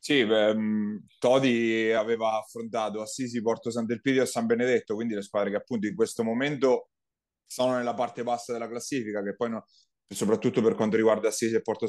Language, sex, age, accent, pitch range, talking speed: Italian, male, 30-49, native, 110-125 Hz, 165 wpm